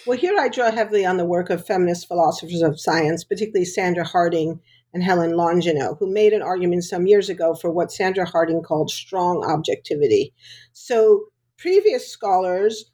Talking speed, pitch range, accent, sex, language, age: 165 wpm, 175-235 Hz, American, female, English, 50-69